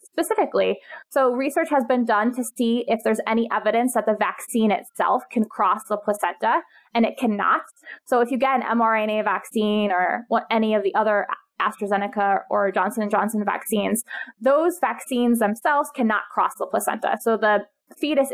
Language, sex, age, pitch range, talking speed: English, female, 20-39, 210-255 Hz, 165 wpm